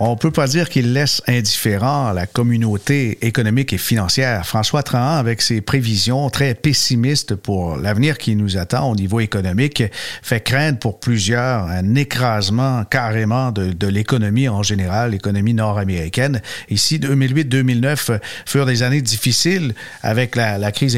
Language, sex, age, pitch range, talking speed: French, male, 50-69, 110-140 Hz, 150 wpm